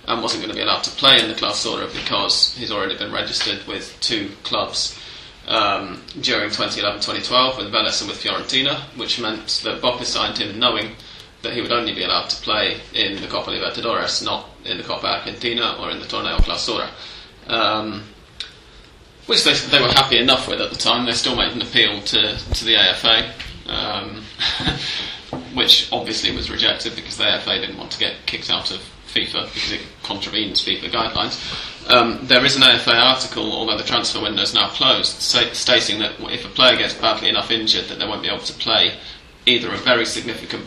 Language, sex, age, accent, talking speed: English, male, 20-39, British, 190 wpm